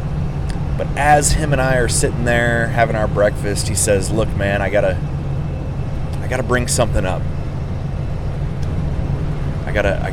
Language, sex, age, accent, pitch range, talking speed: English, male, 30-49, American, 75-105 Hz, 150 wpm